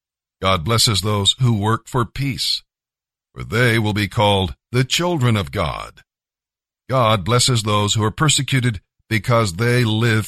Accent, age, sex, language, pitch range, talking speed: American, 50-69, male, English, 105-130 Hz, 145 wpm